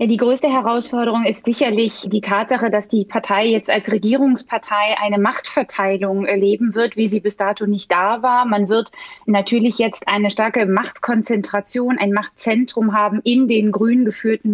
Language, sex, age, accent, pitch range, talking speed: German, female, 20-39, German, 205-240 Hz, 155 wpm